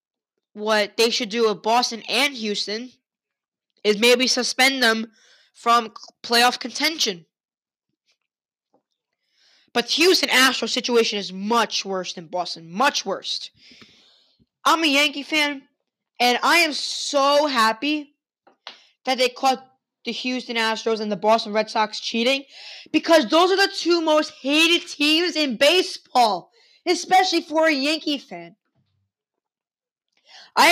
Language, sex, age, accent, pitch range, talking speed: English, female, 20-39, American, 230-300 Hz, 125 wpm